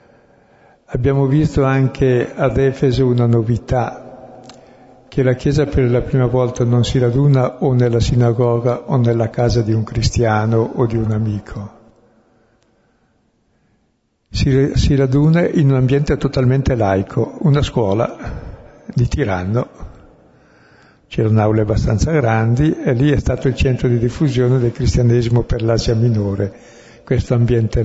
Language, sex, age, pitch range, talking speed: Italian, male, 60-79, 115-135 Hz, 130 wpm